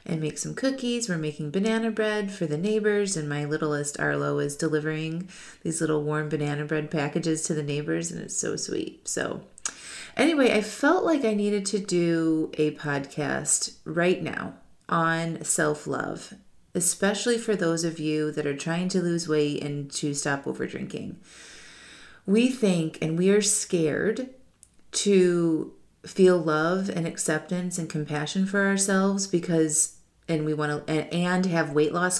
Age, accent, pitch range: 30-49, American, 155-195 Hz